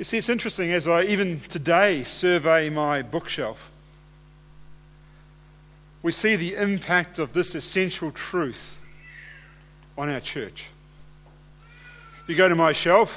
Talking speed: 130 wpm